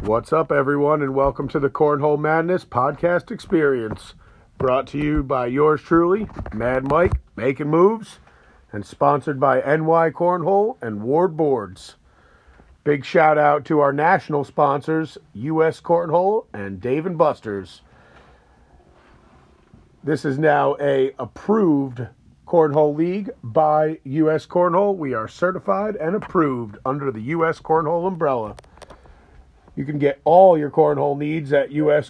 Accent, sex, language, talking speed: American, male, English, 135 wpm